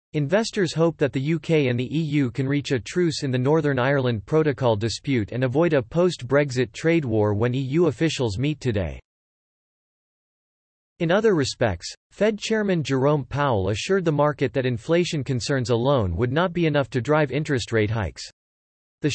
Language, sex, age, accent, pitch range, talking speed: English, male, 40-59, American, 120-160 Hz, 170 wpm